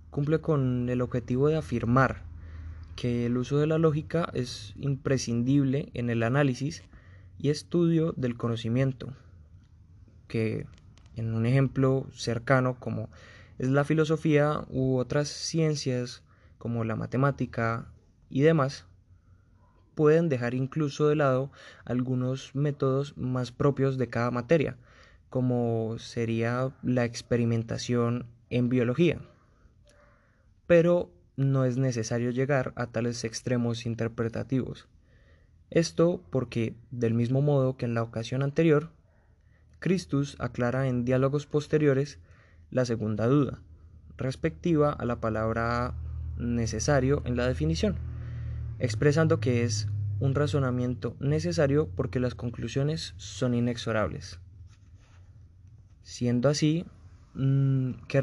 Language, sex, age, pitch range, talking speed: Spanish, male, 20-39, 110-140 Hz, 110 wpm